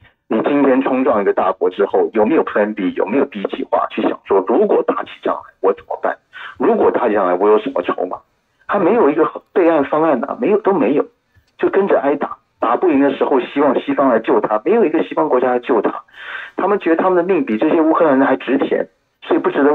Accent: native